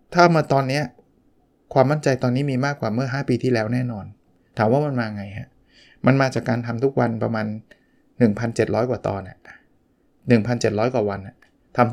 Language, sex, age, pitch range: Thai, male, 20-39, 115-145 Hz